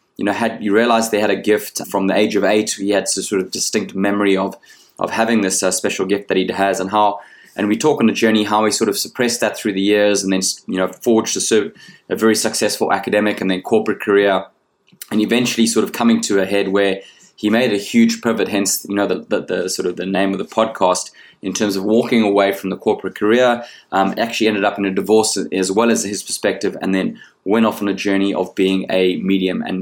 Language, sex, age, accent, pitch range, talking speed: English, male, 20-39, Australian, 95-110 Hz, 245 wpm